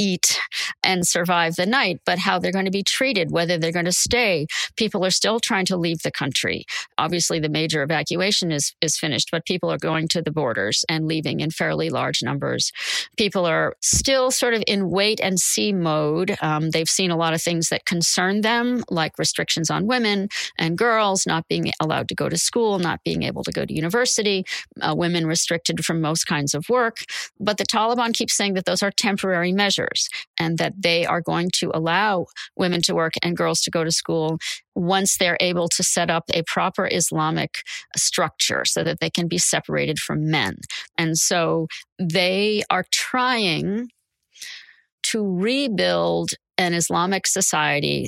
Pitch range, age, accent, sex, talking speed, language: 165-200 Hz, 40-59, American, female, 185 wpm, English